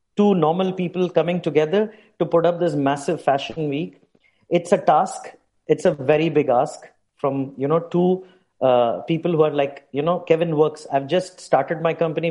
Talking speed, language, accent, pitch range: 185 wpm, Hindi, native, 145-175 Hz